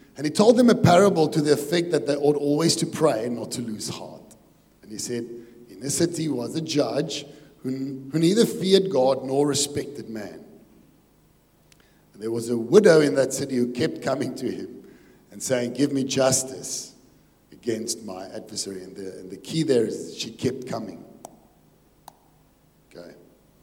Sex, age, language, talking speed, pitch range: male, 50-69, English, 180 wpm, 115-155 Hz